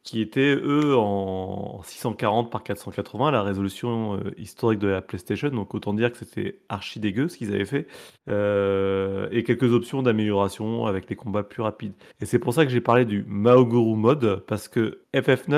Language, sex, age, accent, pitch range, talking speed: French, male, 30-49, French, 105-135 Hz, 185 wpm